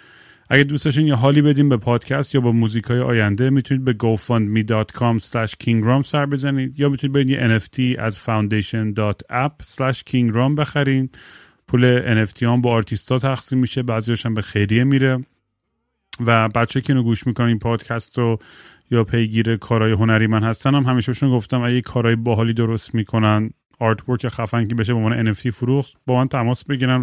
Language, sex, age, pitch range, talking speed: Persian, male, 30-49, 115-135 Hz, 160 wpm